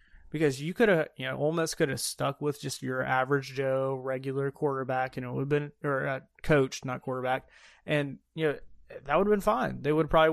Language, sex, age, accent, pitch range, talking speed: English, male, 20-39, American, 130-160 Hz, 225 wpm